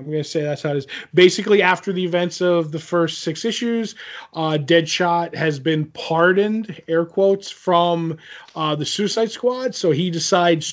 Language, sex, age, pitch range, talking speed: English, male, 30-49, 150-175 Hz, 180 wpm